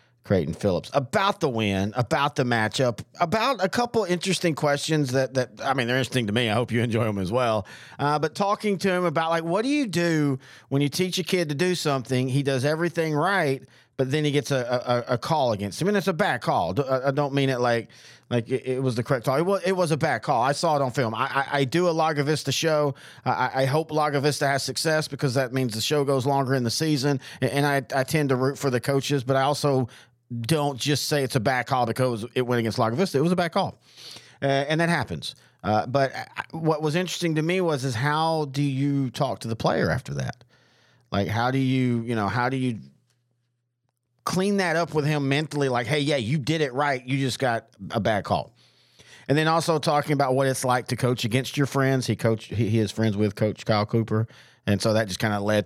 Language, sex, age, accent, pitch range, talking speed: English, male, 40-59, American, 120-155 Hz, 245 wpm